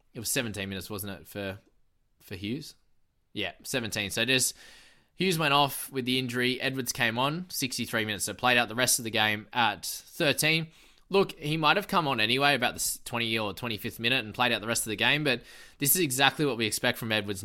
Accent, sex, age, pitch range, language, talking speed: Australian, male, 20-39, 105-130 Hz, English, 220 wpm